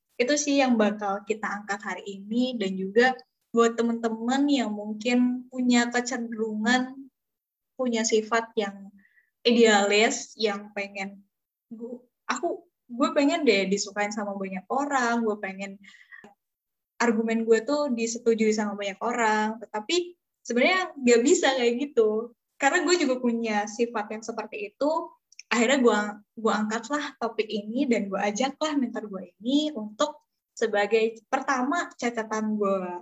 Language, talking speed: Indonesian, 125 wpm